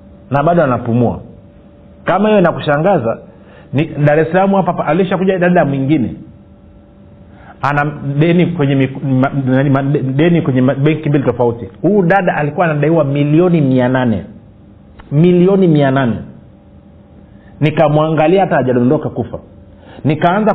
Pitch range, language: 125-170 Hz, Swahili